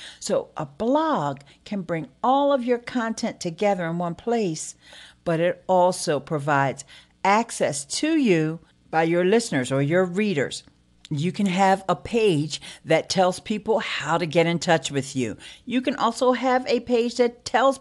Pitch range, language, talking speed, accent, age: 145-225 Hz, English, 165 wpm, American, 50-69